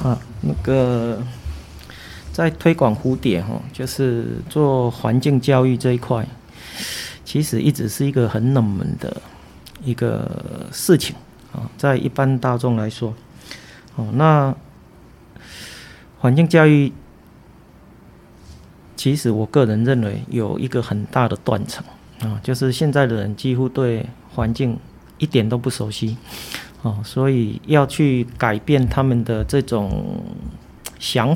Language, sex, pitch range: Chinese, male, 105-135 Hz